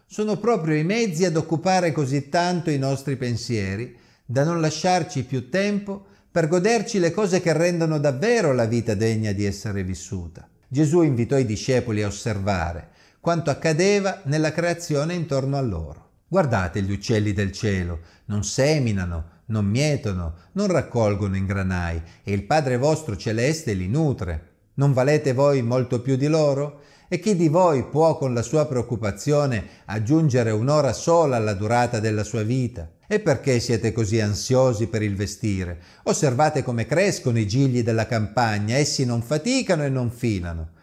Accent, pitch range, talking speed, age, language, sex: native, 105-155 Hz, 155 wpm, 50-69, Italian, male